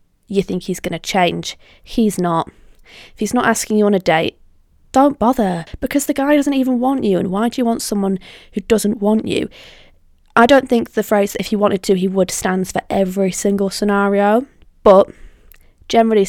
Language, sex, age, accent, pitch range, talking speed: English, female, 20-39, British, 180-210 Hz, 195 wpm